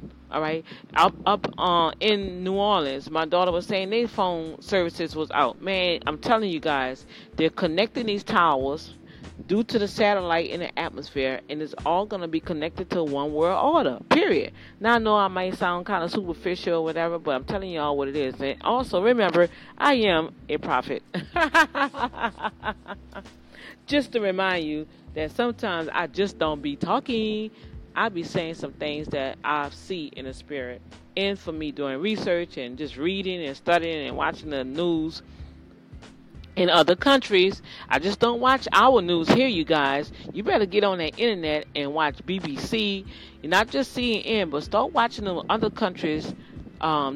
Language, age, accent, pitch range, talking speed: English, 40-59, American, 150-205 Hz, 175 wpm